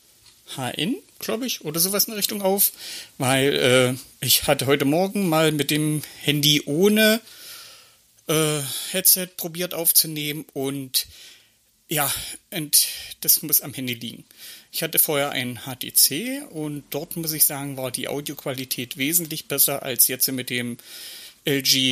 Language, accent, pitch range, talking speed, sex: German, German, 140-170 Hz, 135 wpm, male